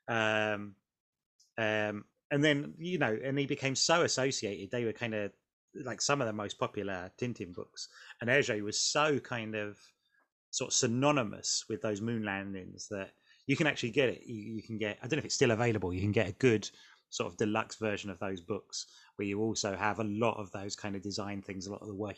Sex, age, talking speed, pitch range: male, 30-49, 220 wpm, 100-115 Hz